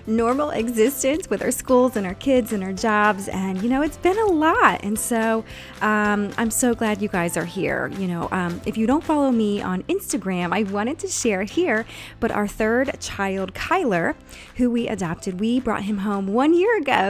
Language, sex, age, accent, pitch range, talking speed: English, female, 20-39, American, 190-245 Hz, 205 wpm